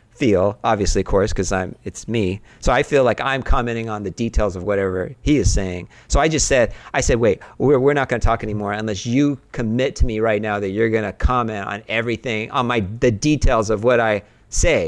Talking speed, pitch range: 220 wpm, 100-125 Hz